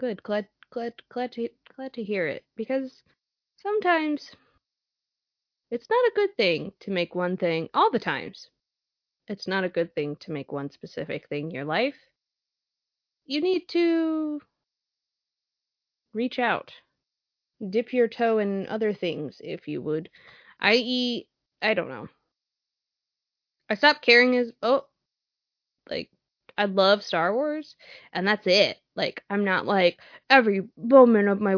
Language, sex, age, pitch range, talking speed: English, female, 20-39, 200-295 Hz, 145 wpm